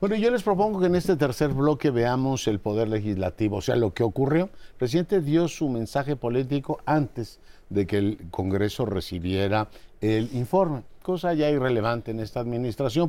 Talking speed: 175 wpm